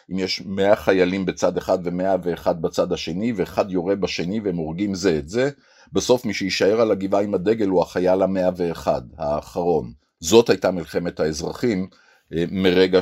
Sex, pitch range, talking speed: male, 85-105 Hz, 160 wpm